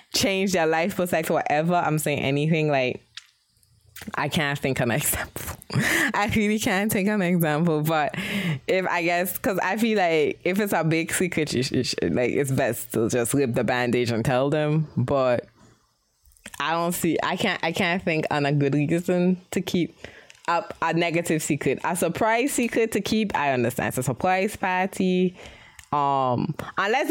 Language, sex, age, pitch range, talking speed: English, female, 20-39, 150-205 Hz, 175 wpm